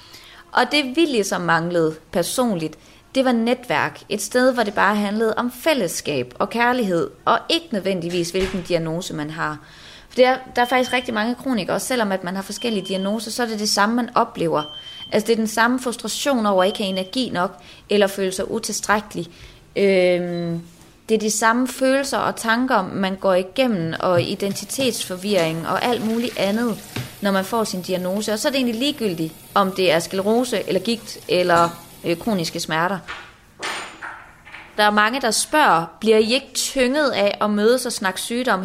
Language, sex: Danish, female